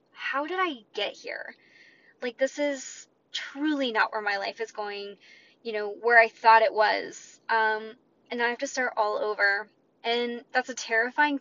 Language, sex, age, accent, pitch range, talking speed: English, female, 10-29, American, 215-270 Hz, 180 wpm